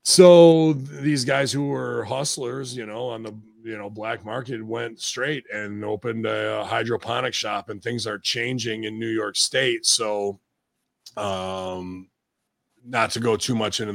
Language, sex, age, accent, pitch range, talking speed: English, male, 30-49, American, 105-120 Hz, 165 wpm